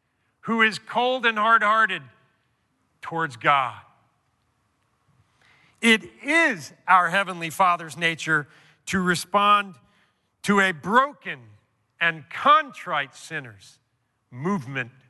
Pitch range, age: 125-215 Hz, 50-69